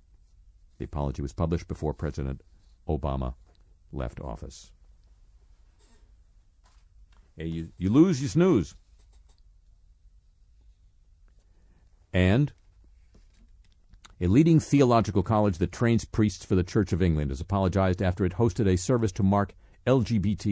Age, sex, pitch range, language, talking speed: 50-69, male, 80-110 Hz, English, 110 wpm